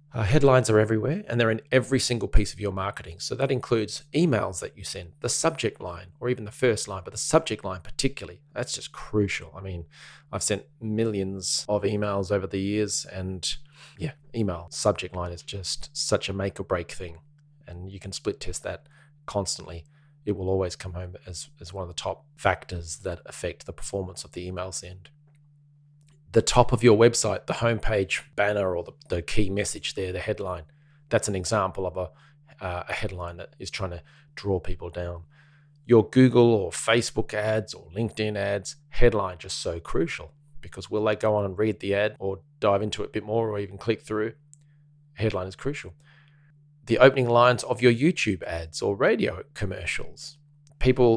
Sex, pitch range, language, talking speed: male, 95-130 Hz, English, 190 wpm